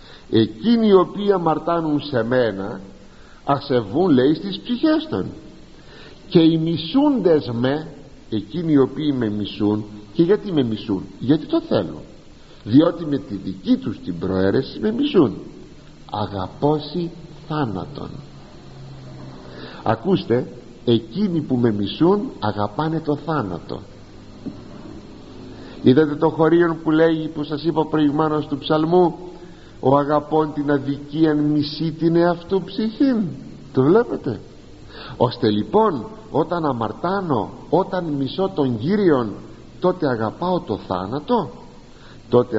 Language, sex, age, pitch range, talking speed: Greek, male, 50-69, 110-170 Hz, 115 wpm